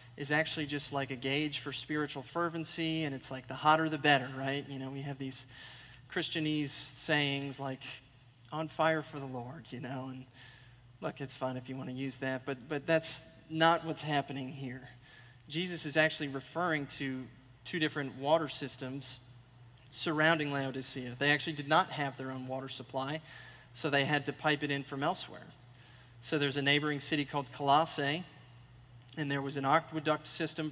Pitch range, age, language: 130-155 Hz, 40-59, English